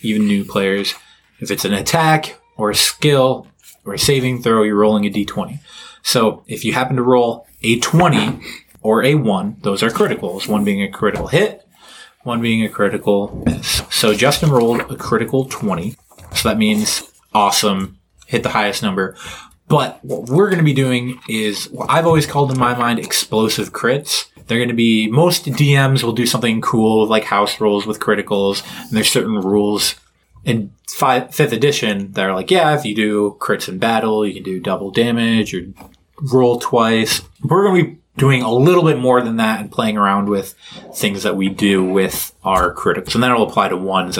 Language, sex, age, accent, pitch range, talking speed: English, male, 20-39, American, 100-130 Hz, 190 wpm